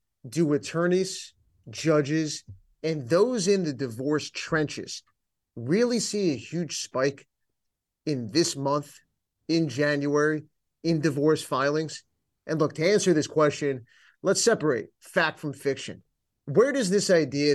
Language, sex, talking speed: English, male, 125 wpm